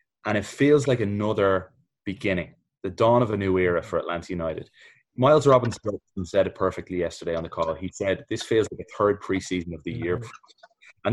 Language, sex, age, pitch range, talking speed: English, male, 20-39, 95-140 Hz, 195 wpm